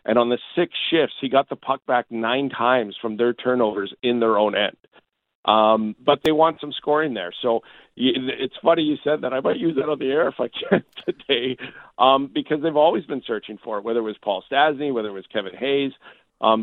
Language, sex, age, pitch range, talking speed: English, male, 40-59, 105-130 Hz, 225 wpm